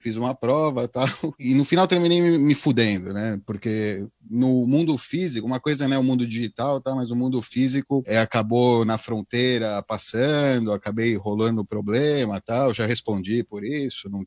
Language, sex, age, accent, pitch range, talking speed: Portuguese, male, 30-49, Brazilian, 105-130 Hz, 185 wpm